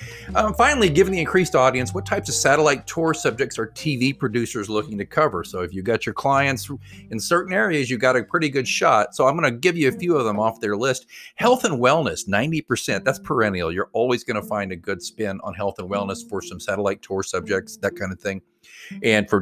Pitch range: 100-145 Hz